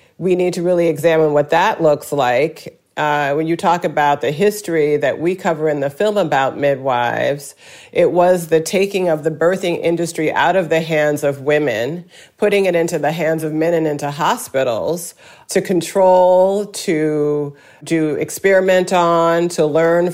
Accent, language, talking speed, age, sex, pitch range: American, English, 165 wpm, 40-59, female, 160-185 Hz